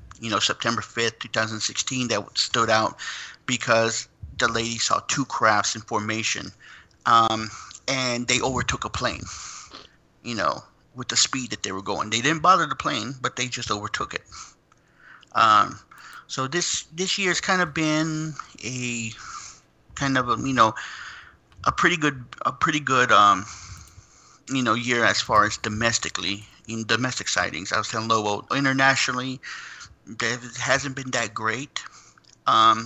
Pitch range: 110-130 Hz